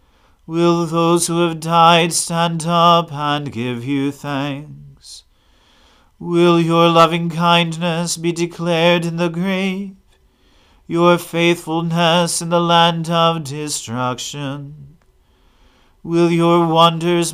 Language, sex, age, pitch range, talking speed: English, male, 40-59, 150-170 Hz, 105 wpm